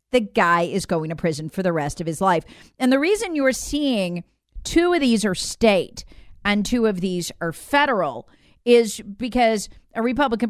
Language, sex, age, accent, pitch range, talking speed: English, female, 40-59, American, 185-260 Hz, 190 wpm